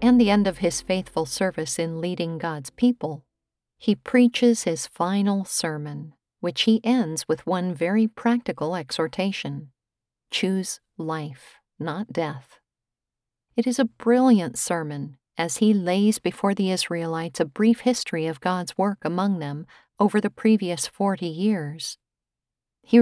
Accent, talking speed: American, 140 wpm